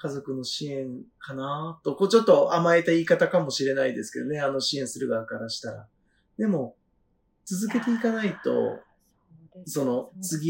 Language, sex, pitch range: Japanese, male, 130-175 Hz